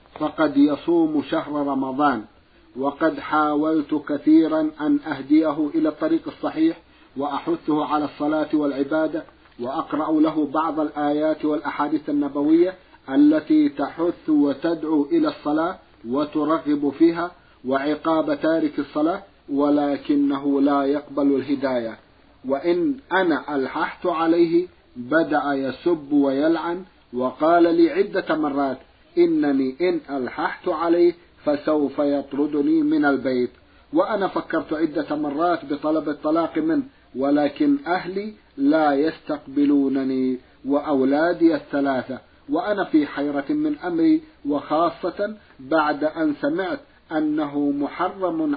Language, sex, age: Arabic, male, 50-69